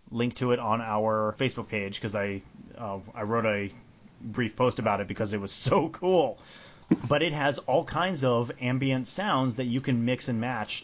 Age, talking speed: 30-49, 200 wpm